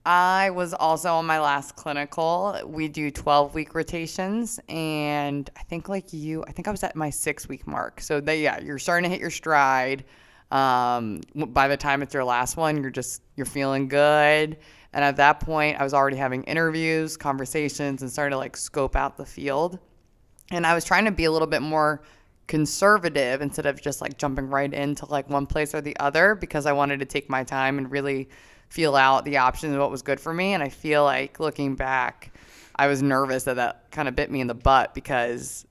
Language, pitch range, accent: English, 130-155 Hz, American